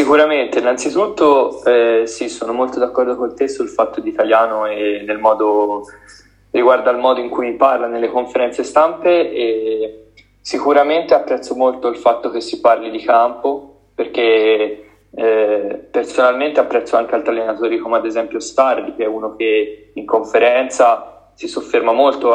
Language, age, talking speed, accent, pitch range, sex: Italian, 20-39, 145 wpm, native, 110-145 Hz, male